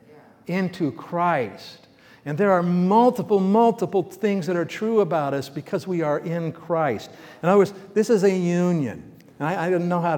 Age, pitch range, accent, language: 60-79, 150-190 Hz, American, English